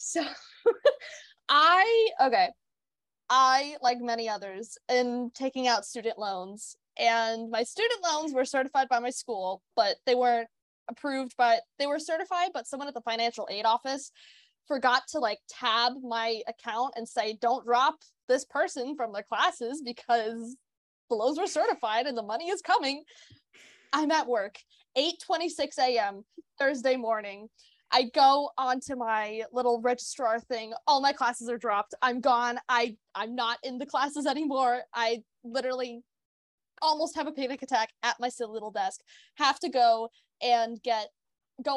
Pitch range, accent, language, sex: 230-275 Hz, American, English, female